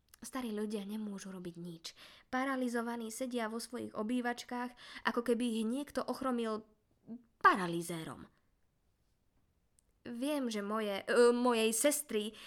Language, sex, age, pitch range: Slovak, female, 20-39, 185-255 Hz